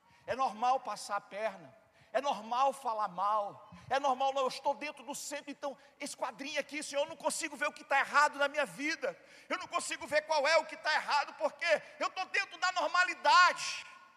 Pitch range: 265-350 Hz